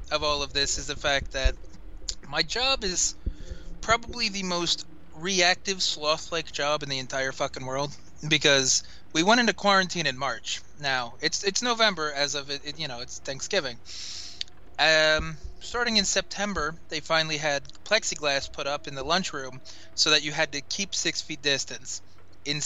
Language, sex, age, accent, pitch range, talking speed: English, male, 20-39, American, 135-170 Hz, 170 wpm